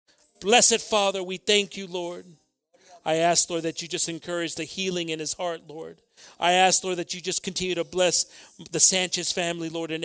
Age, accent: 40-59, American